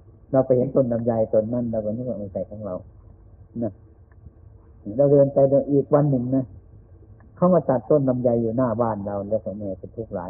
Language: Thai